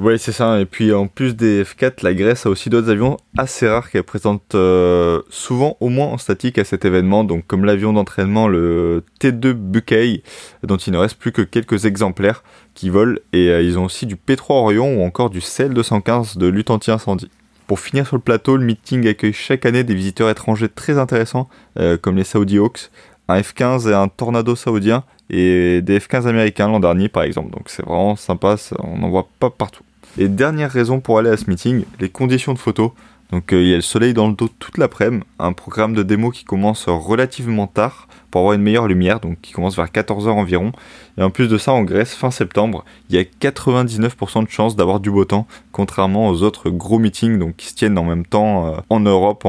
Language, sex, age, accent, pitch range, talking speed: French, male, 20-39, French, 95-115 Hz, 220 wpm